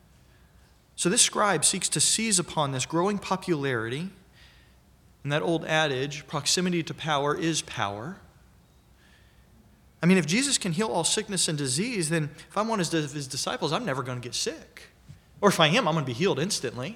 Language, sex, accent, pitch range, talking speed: English, male, American, 135-185 Hz, 185 wpm